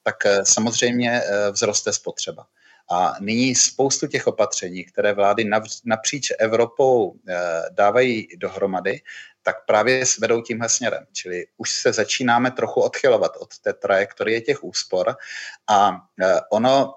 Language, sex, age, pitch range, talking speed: Czech, male, 30-49, 105-125 Hz, 120 wpm